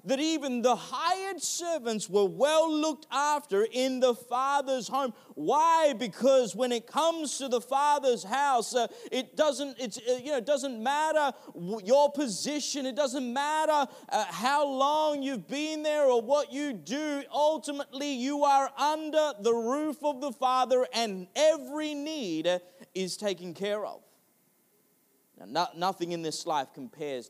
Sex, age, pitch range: male, 30-49, 205-280 Hz